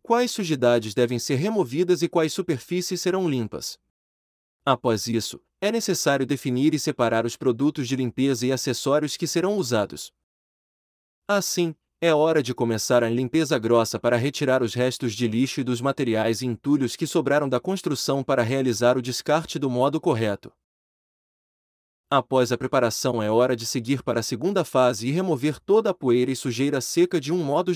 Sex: male